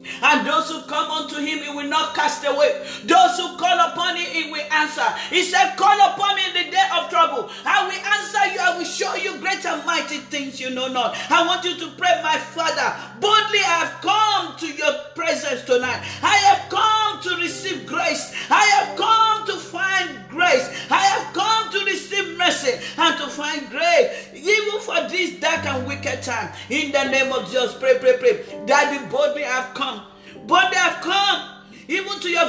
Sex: male